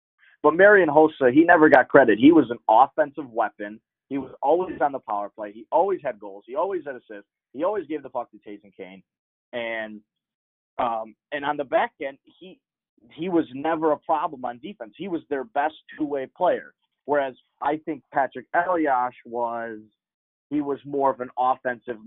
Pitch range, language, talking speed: 110-150 Hz, English, 190 wpm